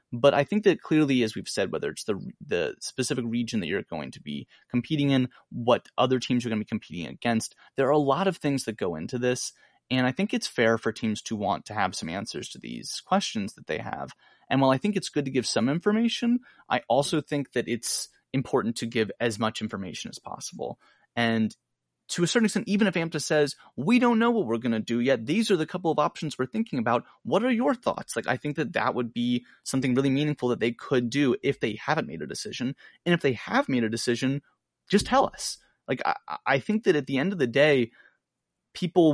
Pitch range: 120-165 Hz